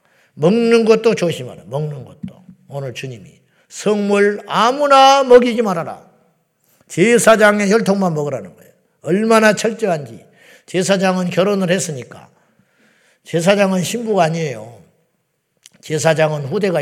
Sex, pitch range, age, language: male, 170-210 Hz, 50-69, Korean